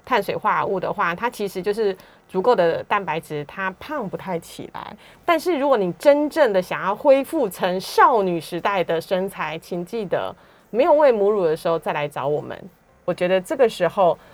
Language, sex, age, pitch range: Chinese, female, 30-49, 170-245 Hz